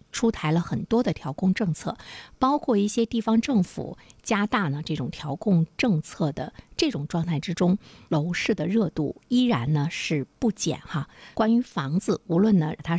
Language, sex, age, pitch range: Chinese, female, 50-69, 155-220 Hz